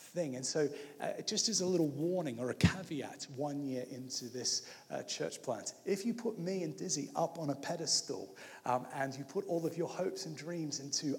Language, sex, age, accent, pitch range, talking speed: English, male, 30-49, British, 140-190 Hz, 215 wpm